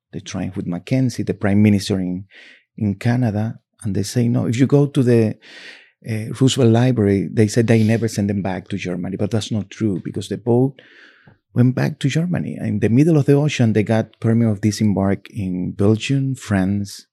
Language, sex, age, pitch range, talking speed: English, male, 30-49, 105-120 Hz, 200 wpm